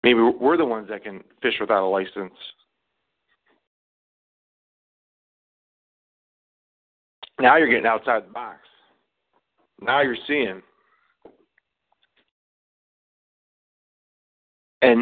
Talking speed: 80 wpm